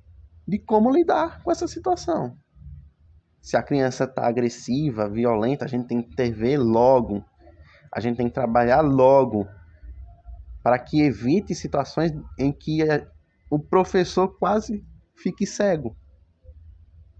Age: 20-39